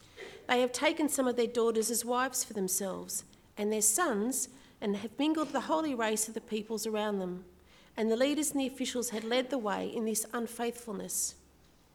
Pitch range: 210-245 Hz